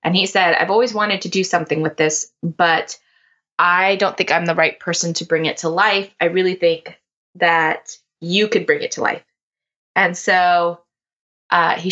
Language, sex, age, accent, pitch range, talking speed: English, female, 20-39, American, 165-195 Hz, 190 wpm